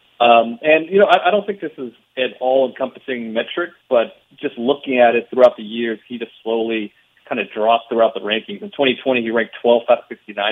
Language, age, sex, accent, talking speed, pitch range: English, 40-59, male, American, 220 wpm, 110-125 Hz